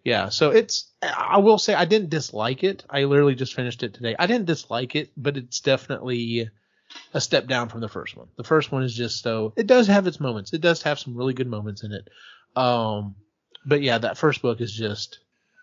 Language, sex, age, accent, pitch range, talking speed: English, male, 30-49, American, 120-150 Hz, 225 wpm